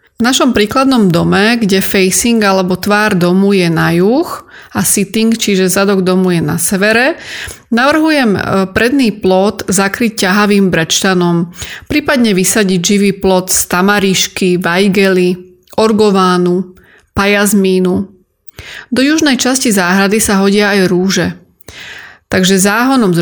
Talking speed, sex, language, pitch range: 120 wpm, female, Slovak, 185-230 Hz